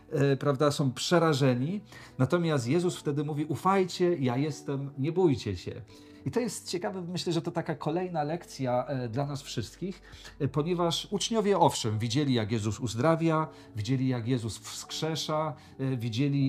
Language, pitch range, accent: Polish, 125-160 Hz, native